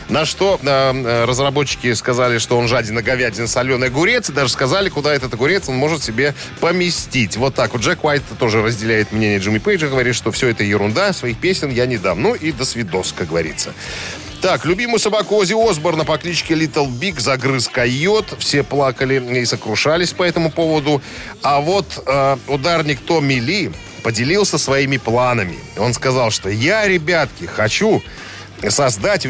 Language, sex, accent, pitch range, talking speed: Russian, male, native, 120-160 Hz, 165 wpm